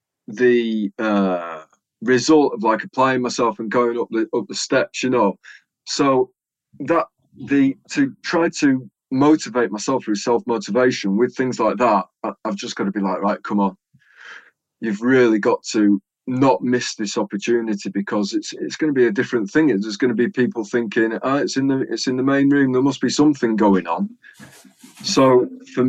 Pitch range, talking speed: 110-150 Hz, 180 wpm